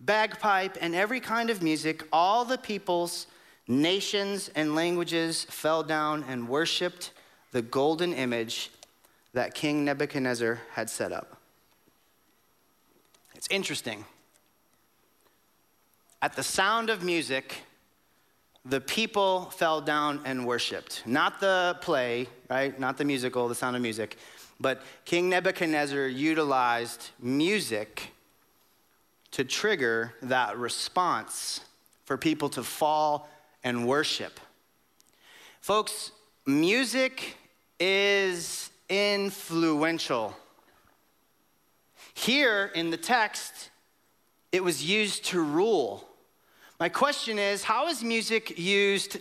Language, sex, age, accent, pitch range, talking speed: English, male, 30-49, American, 135-200 Hz, 100 wpm